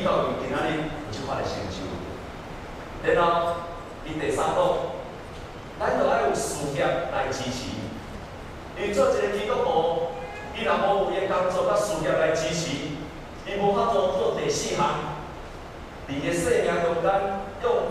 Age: 40-59